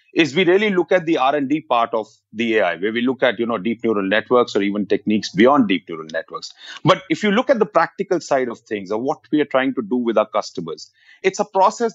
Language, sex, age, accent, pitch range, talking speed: English, male, 30-49, Indian, 120-175 Hz, 250 wpm